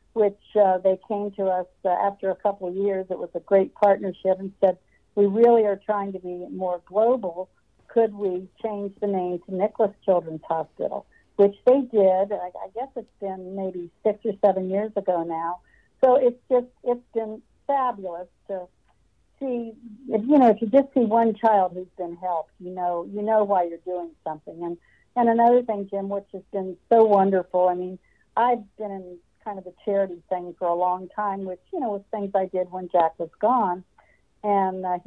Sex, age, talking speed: female, 60-79, 200 wpm